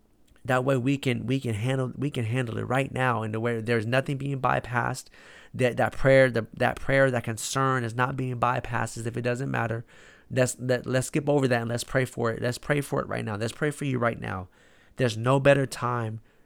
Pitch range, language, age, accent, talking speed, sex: 120-135 Hz, English, 30-49, American, 235 wpm, male